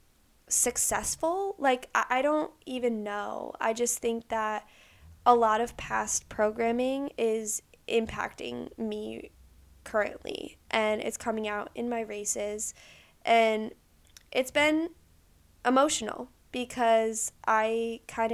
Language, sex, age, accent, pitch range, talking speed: English, female, 10-29, American, 215-240 Hz, 110 wpm